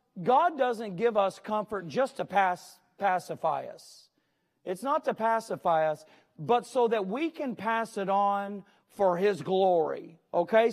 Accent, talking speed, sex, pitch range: American, 145 wpm, male, 175-245 Hz